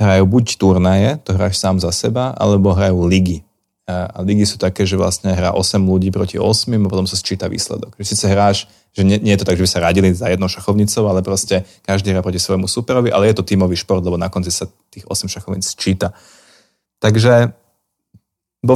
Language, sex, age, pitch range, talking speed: Slovak, male, 30-49, 90-100 Hz, 210 wpm